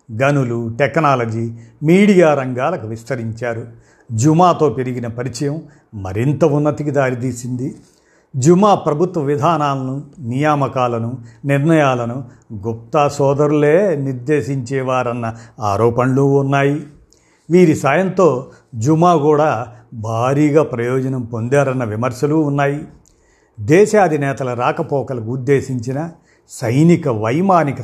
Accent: native